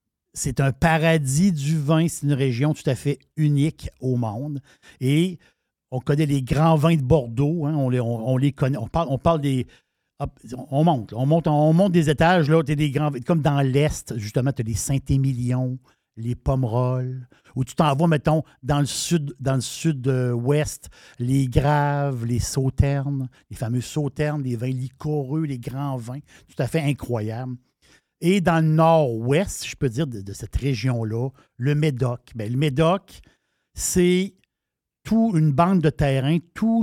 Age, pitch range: 60-79, 125-155 Hz